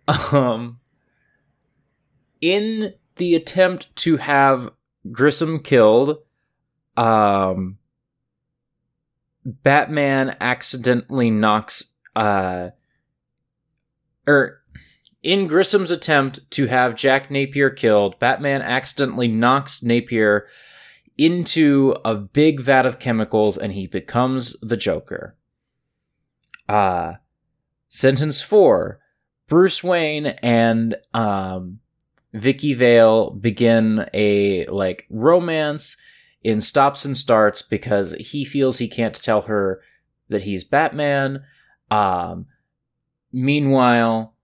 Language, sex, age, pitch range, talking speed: English, male, 20-39, 110-145 Hz, 90 wpm